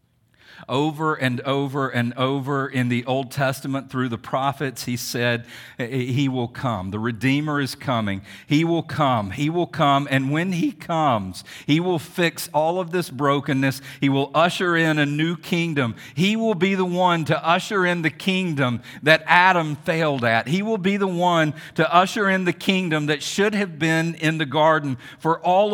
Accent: American